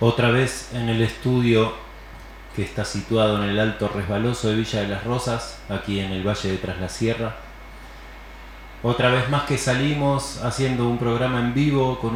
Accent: Argentinian